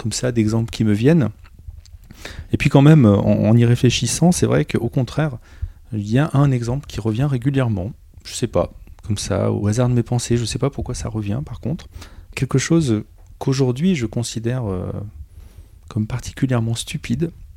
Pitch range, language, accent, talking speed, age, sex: 95-130 Hz, French, French, 180 wpm, 30-49, male